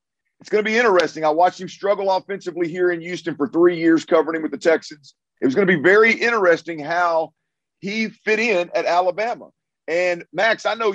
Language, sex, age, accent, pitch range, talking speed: English, male, 50-69, American, 150-185 Hz, 210 wpm